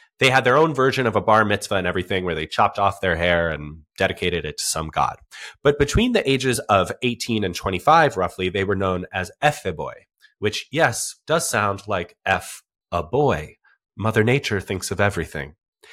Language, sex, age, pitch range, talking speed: English, male, 30-49, 95-150 Hz, 190 wpm